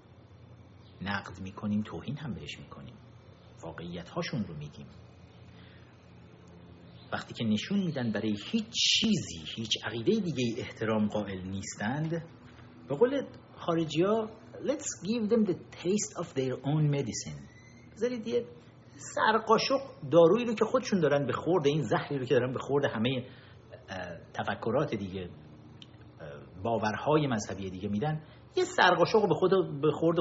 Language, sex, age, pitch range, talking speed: Persian, male, 50-69, 105-160 Hz, 115 wpm